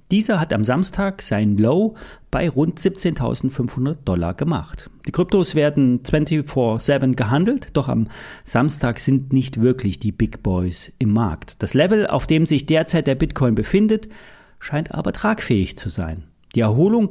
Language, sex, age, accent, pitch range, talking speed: German, male, 40-59, German, 115-190 Hz, 150 wpm